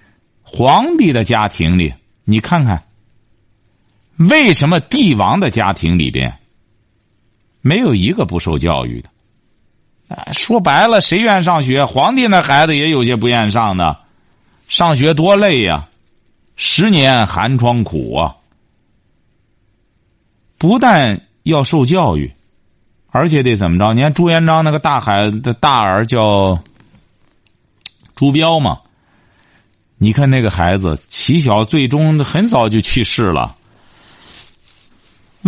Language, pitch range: Chinese, 100-155 Hz